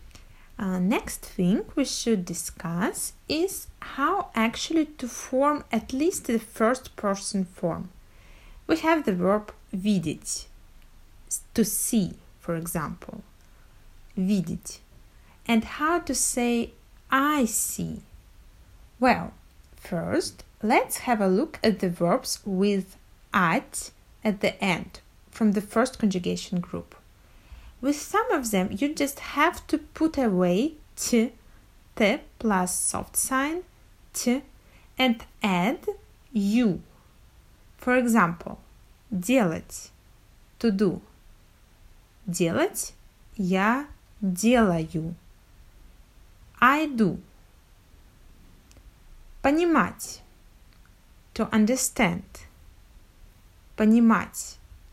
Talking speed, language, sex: 90 wpm, Russian, female